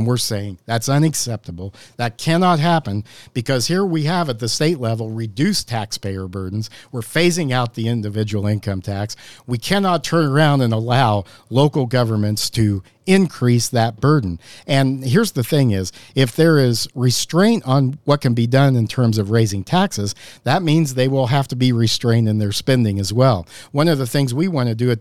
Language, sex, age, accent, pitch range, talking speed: English, male, 50-69, American, 110-145 Hz, 190 wpm